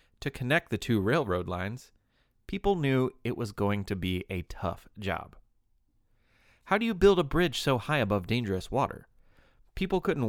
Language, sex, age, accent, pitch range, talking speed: English, male, 30-49, American, 95-145 Hz, 170 wpm